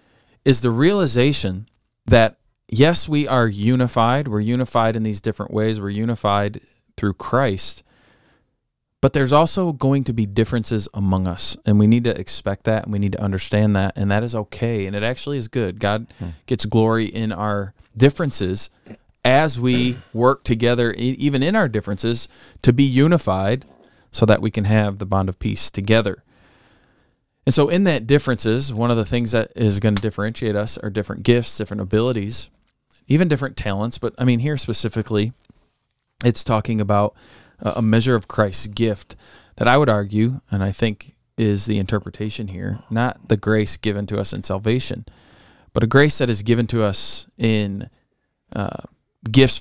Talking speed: 170 wpm